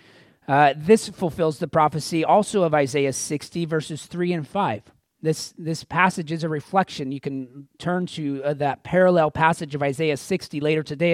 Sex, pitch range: male, 140-180 Hz